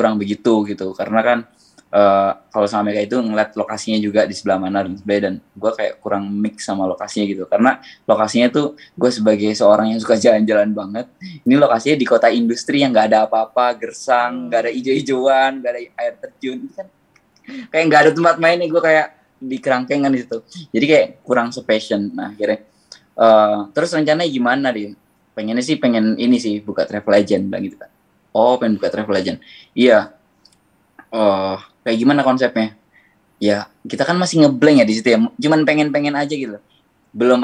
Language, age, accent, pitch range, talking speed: Indonesian, 20-39, native, 110-140 Hz, 175 wpm